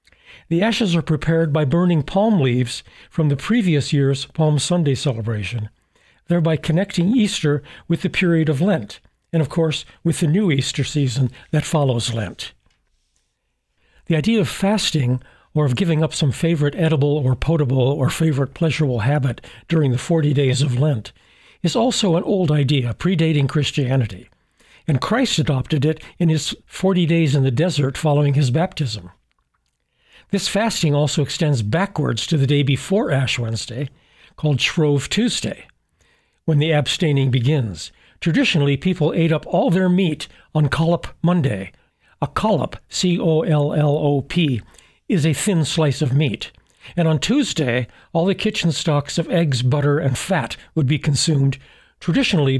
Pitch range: 135-170 Hz